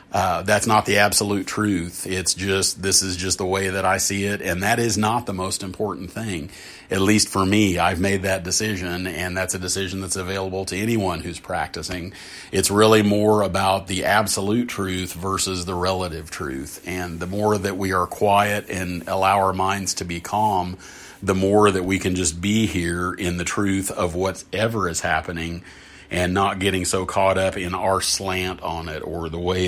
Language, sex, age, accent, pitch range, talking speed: English, male, 40-59, American, 90-100 Hz, 195 wpm